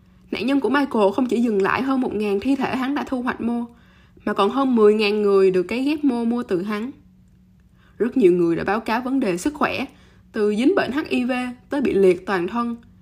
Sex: female